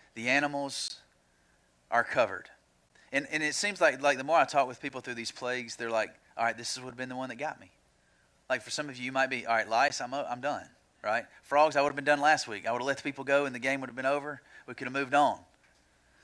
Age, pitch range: 30-49, 130-185 Hz